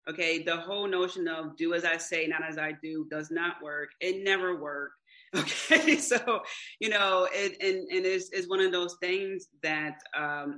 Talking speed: 195 wpm